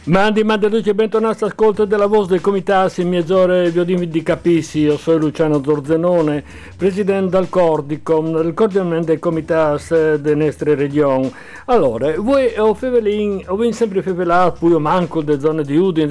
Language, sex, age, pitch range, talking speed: Italian, male, 60-79, 150-195 Hz, 140 wpm